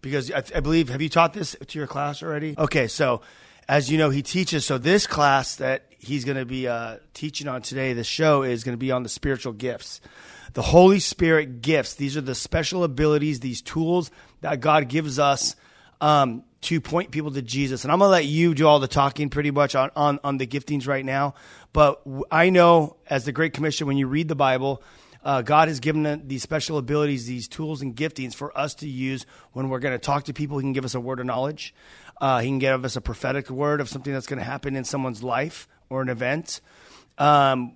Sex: male